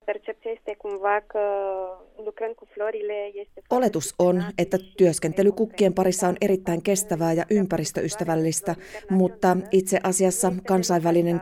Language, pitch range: Finnish, 165-200 Hz